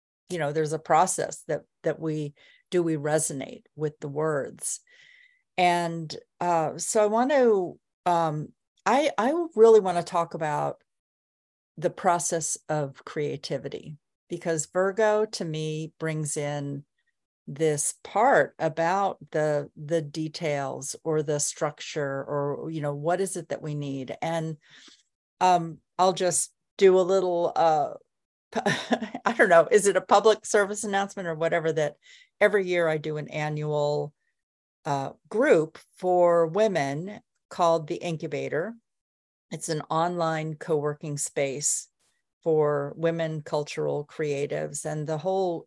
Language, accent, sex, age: English, American, female, 50-69